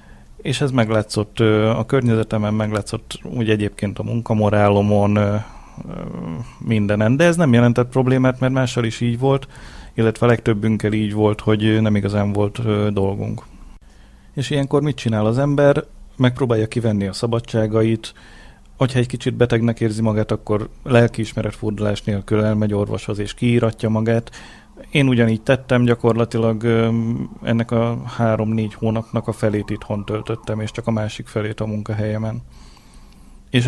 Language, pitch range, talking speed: Hungarian, 105-115 Hz, 130 wpm